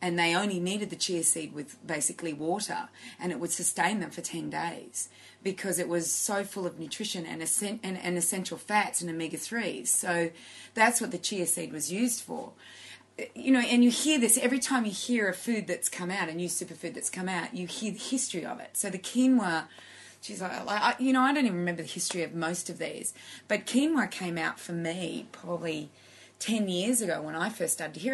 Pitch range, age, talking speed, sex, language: 170-235 Hz, 30-49, 215 wpm, female, English